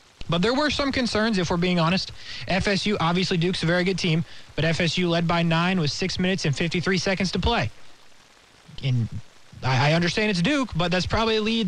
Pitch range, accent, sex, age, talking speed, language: 140-185 Hz, American, male, 20-39, 205 wpm, English